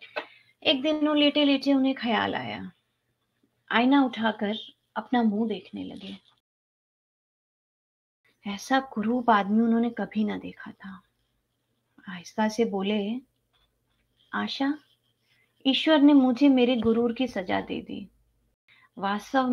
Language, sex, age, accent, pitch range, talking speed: Hindi, female, 30-49, native, 190-265 Hz, 100 wpm